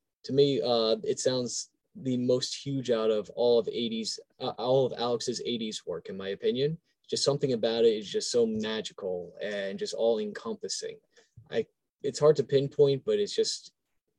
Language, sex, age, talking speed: English, male, 20-39, 175 wpm